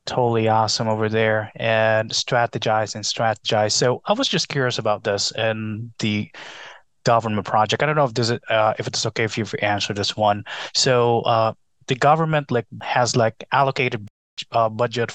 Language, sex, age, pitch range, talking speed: English, male, 20-39, 110-125 Hz, 180 wpm